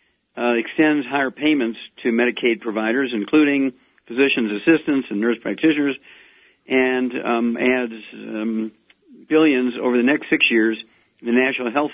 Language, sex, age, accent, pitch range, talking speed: English, male, 50-69, American, 115-140 Hz, 135 wpm